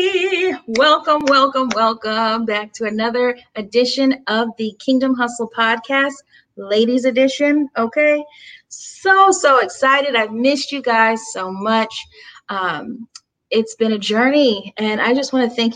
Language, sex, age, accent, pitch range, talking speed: English, female, 30-49, American, 215-270 Hz, 135 wpm